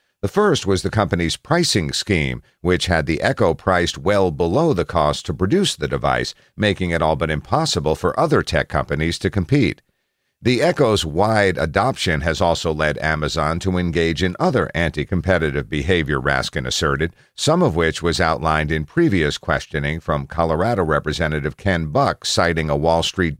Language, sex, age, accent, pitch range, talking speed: English, male, 50-69, American, 80-95 Hz, 165 wpm